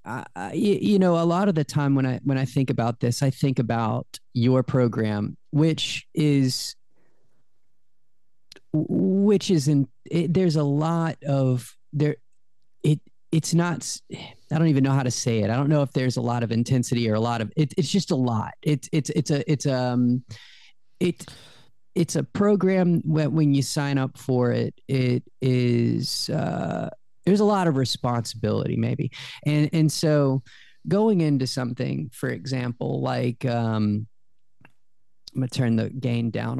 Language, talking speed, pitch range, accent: English, 165 wpm, 120-155 Hz, American